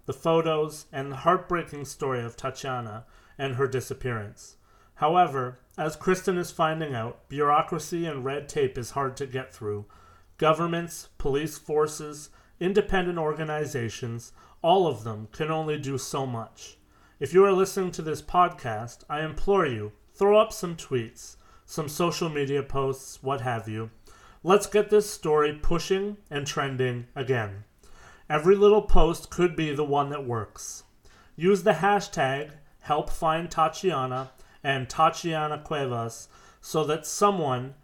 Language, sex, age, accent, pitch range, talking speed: English, male, 30-49, American, 130-170 Hz, 140 wpm